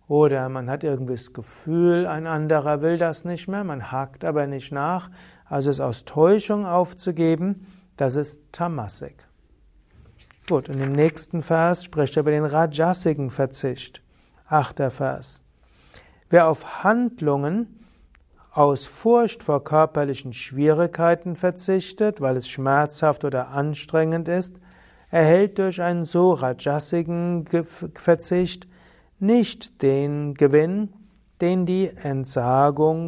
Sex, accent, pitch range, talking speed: male, German, 135-175 Hz, 120 wpm